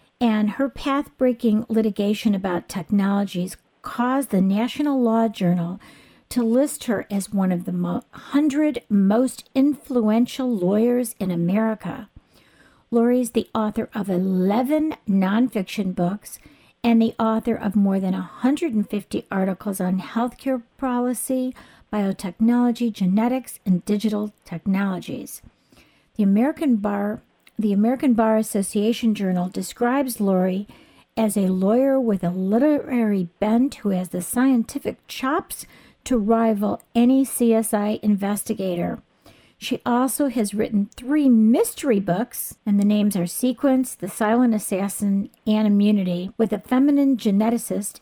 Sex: female